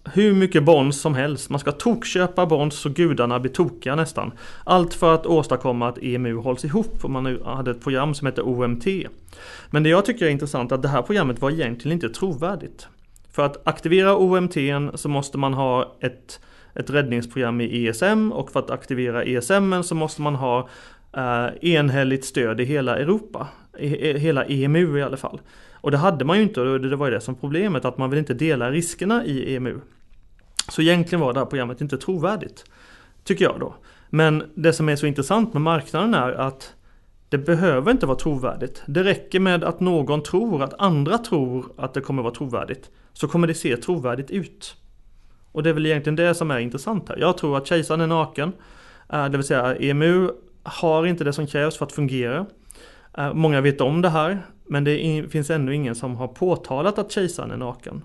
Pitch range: 130-170 Hz